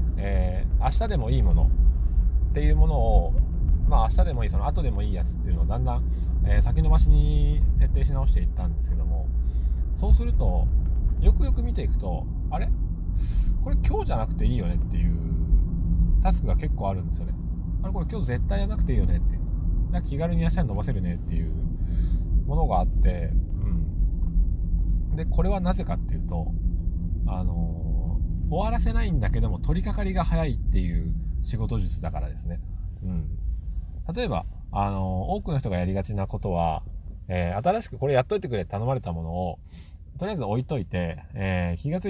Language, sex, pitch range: Japanese, male, 80-100 Hz